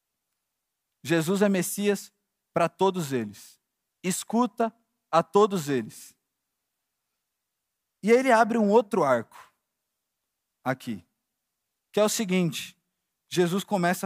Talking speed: 100 wpm